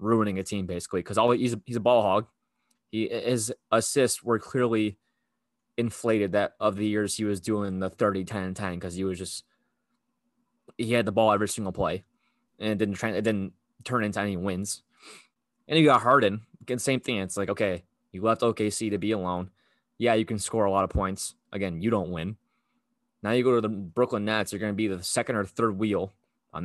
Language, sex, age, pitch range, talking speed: English, male, 20-39, 100-125 Hz, 215 wpm